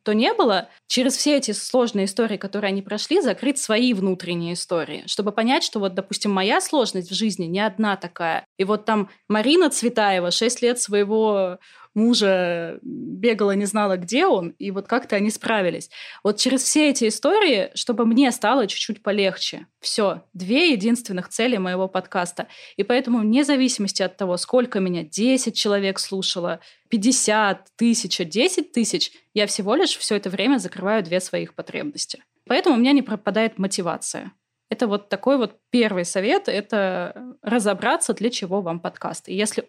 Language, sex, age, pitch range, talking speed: Russian, female, 20-39, 195-245 Hz, 160 wpm